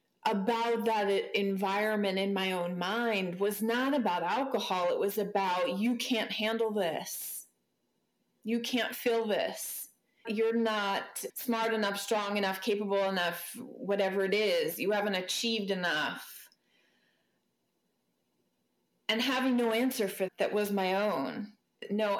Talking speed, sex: 125 wpm, female